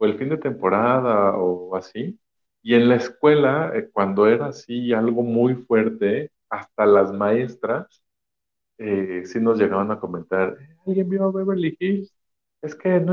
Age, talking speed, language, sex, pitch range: 50-69, 160 wpm, Spanish, male, 100-155 Hz